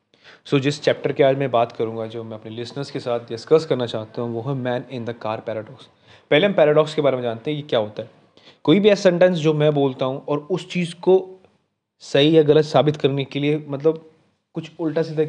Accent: native